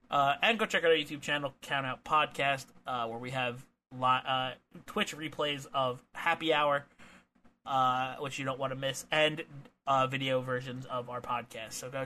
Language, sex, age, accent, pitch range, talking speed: English, male, 30-49, American, 125-150 Hz, 185 wpm